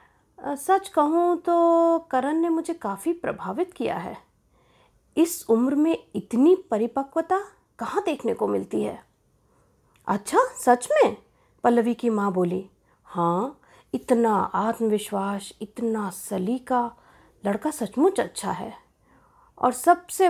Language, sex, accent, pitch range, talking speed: Hindi, female, native, 215-320 Hz, 110 wpm